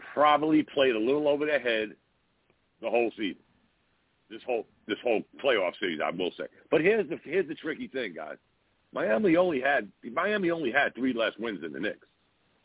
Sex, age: male, 60-79